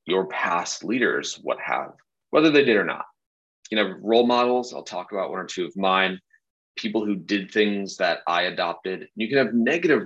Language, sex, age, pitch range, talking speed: English, male, 30-49, 95-120 Hz, 205 wpm